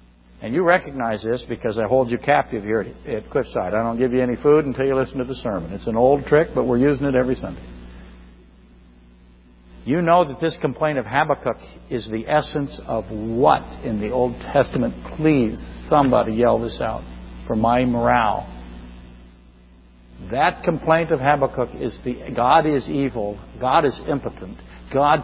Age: 60-79